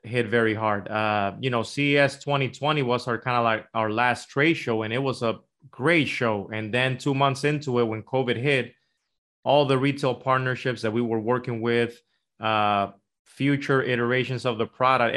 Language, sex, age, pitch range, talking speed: English, male, 20-39, 115-130 Hz, 185 wpm